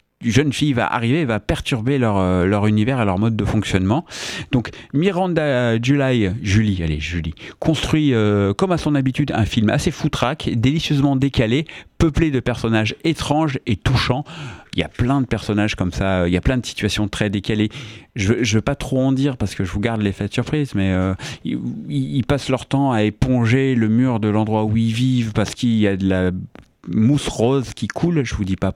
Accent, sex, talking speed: French, male, 210 wpm